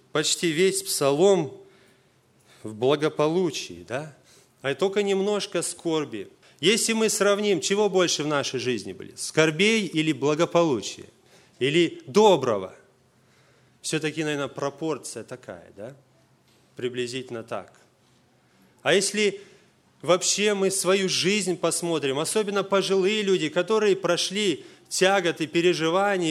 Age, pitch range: 30-49, 135-195 Hz